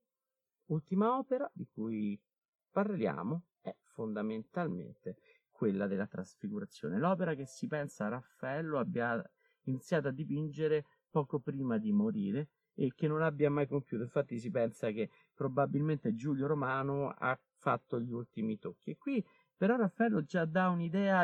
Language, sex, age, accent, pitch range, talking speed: Italian, male, 50-69, native, 130-175 Hz, 135 wpm